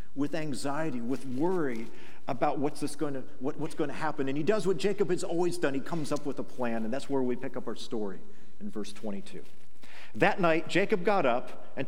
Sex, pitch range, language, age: male, 120-165 Hz, English, 50-69